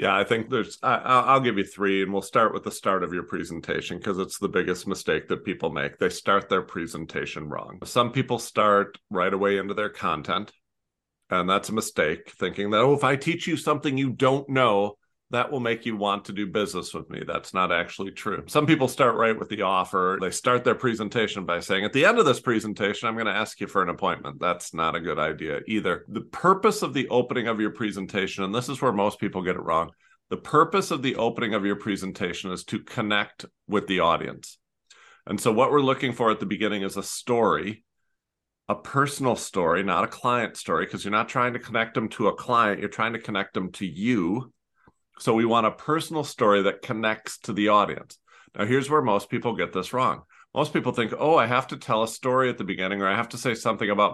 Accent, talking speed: American, 230 wpm